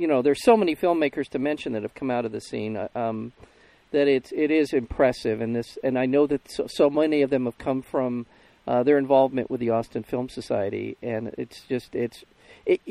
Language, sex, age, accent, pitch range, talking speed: English, male, 40-59, American, 115-145 Hz, 225 wpm